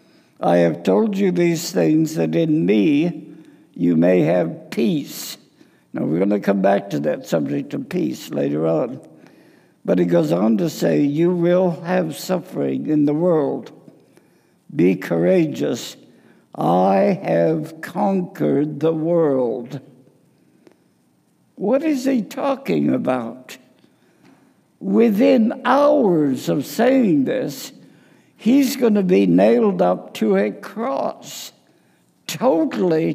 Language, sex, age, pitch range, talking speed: English, male, 60-79, 145-205 Hz, 120 wpm